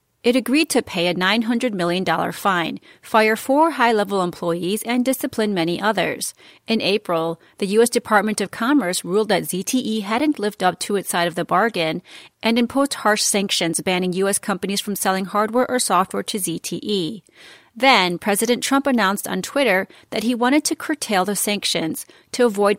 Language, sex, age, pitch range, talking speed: English, female, 30-49, 180-240 Hz, 170 wpm